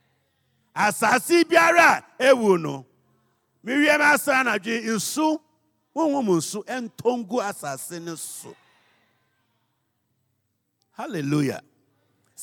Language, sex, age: English, male, 50-69